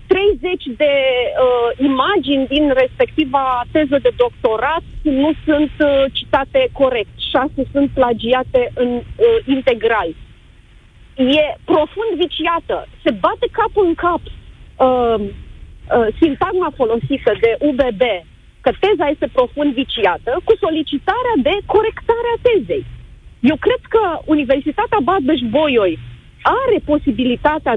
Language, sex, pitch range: Romanian, female, 255-365 Hz